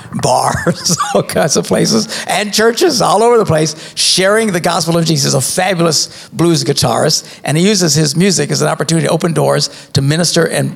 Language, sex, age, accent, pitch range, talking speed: English, male, 60-79, American, 150-200 Hz, 190 wpm